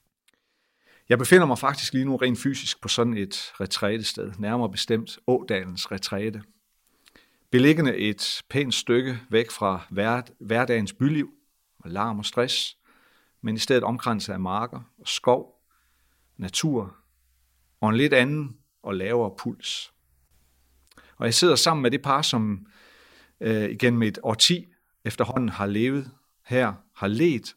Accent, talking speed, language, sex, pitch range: native, 135 wpm, Danish, male, 100-130 Hz